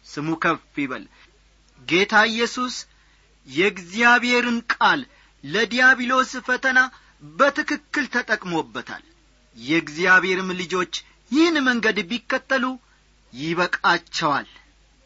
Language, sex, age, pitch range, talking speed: Amharic, male, 40-59, 180-250 Hz, 70 wpm